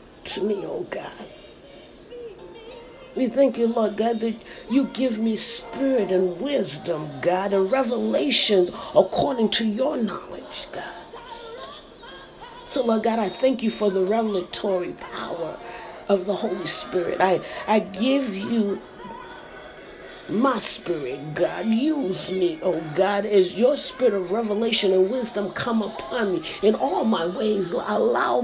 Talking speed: 135 wpm